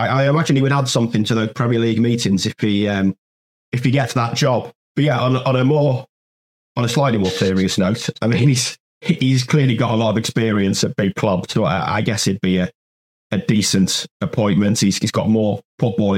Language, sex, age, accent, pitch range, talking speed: English, male, 30-49, British, 95-115 Hz, 220 wpm